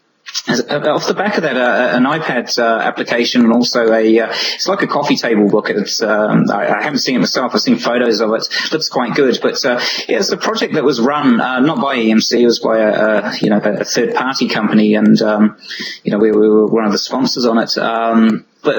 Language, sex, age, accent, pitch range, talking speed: English, male, 20-39, British, 110-125 Hz, 225 wpm